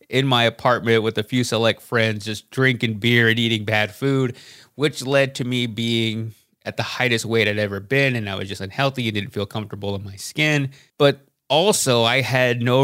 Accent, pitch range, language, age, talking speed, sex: American, 110-140 Hz, English, 30-49, 205 wpm, male